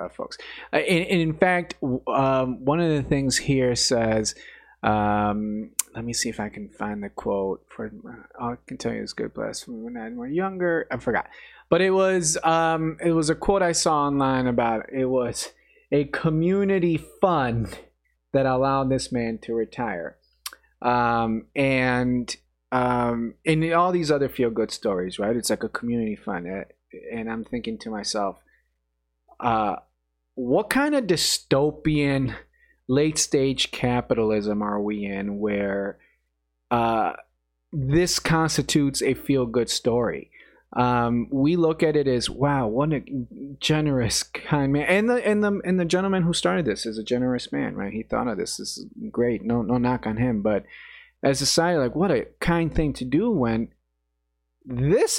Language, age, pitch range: English, 30-49, 115-160 Hz